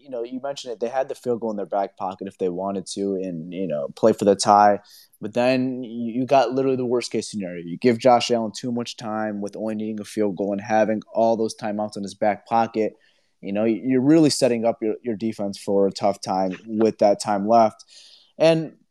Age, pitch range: 20-39, 105-140 Hz